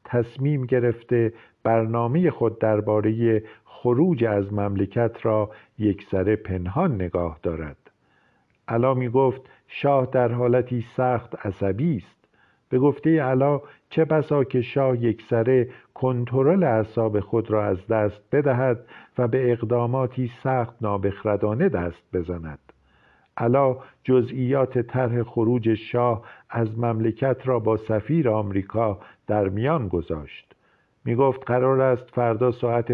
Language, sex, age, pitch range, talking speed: Persian, male, 50-69, 110-130 Hz, 115 wpm